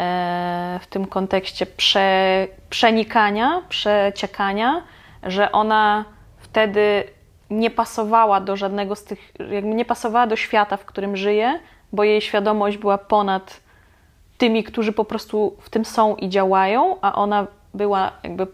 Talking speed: 130 wpm